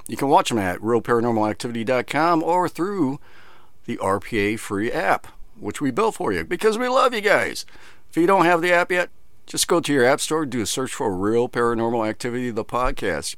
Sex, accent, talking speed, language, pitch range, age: male, American, 195 wpm, English, 105-160 Hz, 50-69